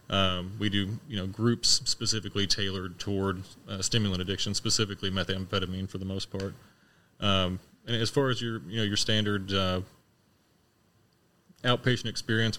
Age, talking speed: 30-49, 150 wpm